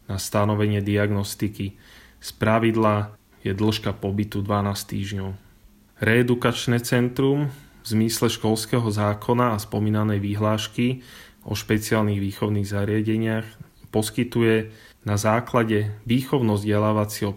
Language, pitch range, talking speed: Slovak, 105-110 Hz, 90 wpm